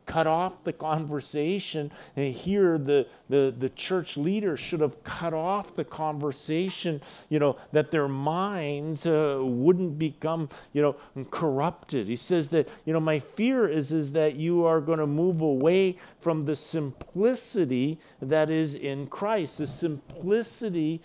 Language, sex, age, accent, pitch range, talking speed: English, male, 50-69, American, 145-175 Hz, 150 wpm